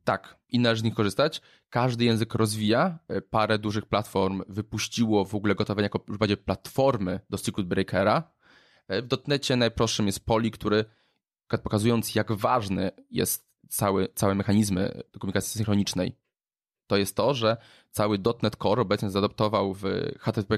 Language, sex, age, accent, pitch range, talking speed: Polish, male, 20-39, native, 100-115 Hz, 140 wpm